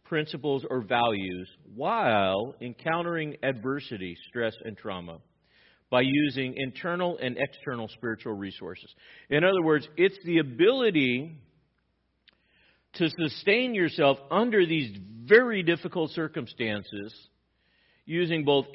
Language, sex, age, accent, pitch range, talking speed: English, male, 50-69, American, 130-175 Hz, 100 wpm